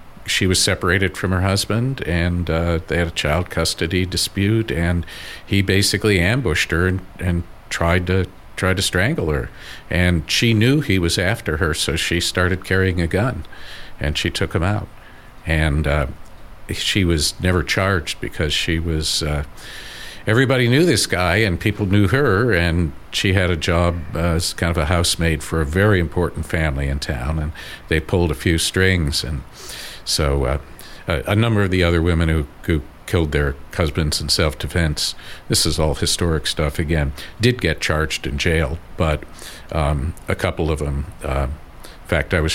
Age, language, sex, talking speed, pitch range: 50-69, English, male, 175 wpm, 75-95 Hz